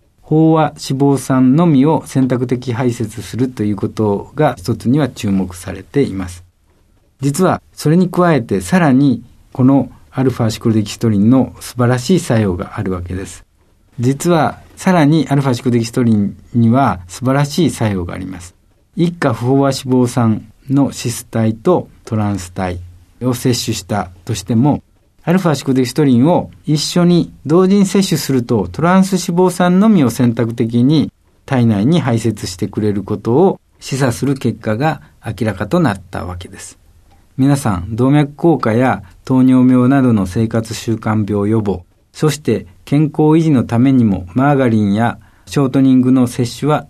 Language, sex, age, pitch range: Japanese, male, 60-79, 105-140 Hz